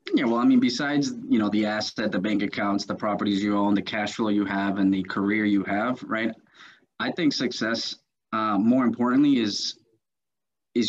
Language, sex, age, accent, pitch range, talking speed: English, male, 20-39, American, 100-120 Hz, 195 wpm